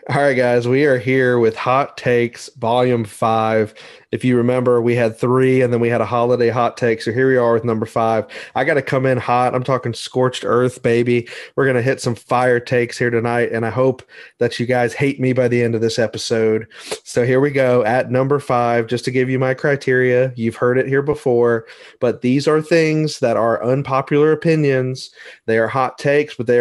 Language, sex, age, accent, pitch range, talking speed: English, male, 30-49, American, 120-135 Hz, 220 wpm